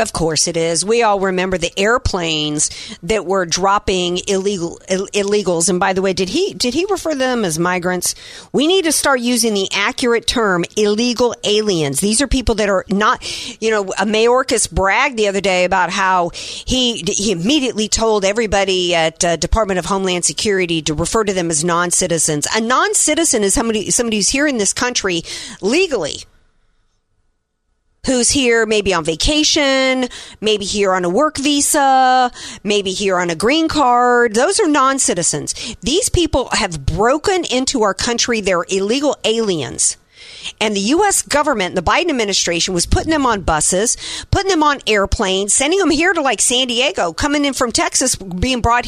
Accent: American